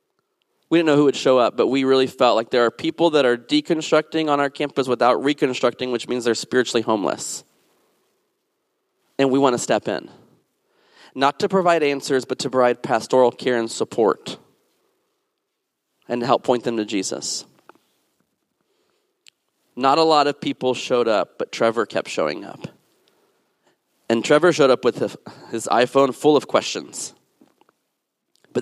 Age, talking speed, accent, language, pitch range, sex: 30-49, 155 wpm, American, English, 125-170 Hz, male